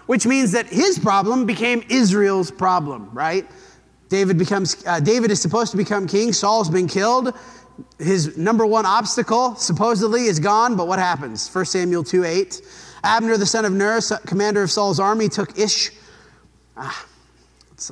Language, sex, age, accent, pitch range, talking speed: English, male, 30-49, American, 165-220 Hz, 155 wpm